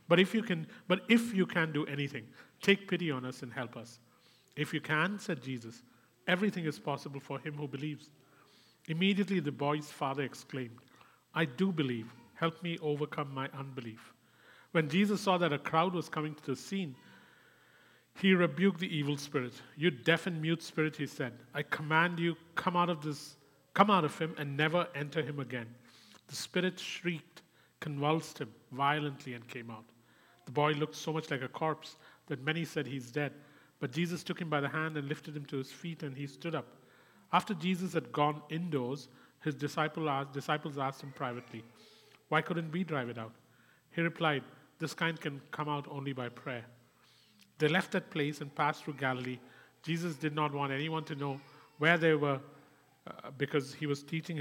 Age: 40-59